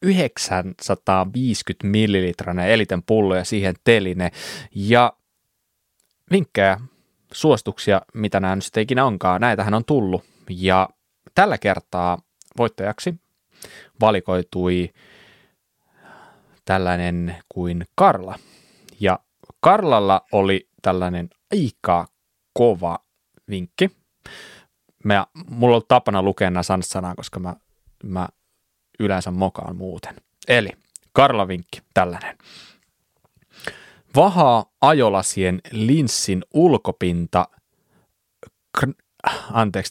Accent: native